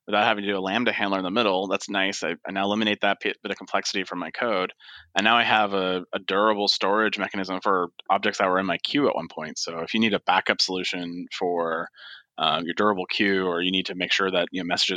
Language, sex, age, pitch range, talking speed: English, male, 30-49, 90-115 Hz, 255 wpm